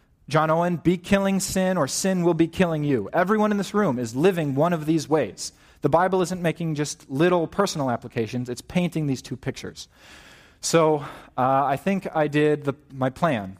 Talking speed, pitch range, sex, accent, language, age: 185 wpm, 130-165 Hz, male, American, English, 30-49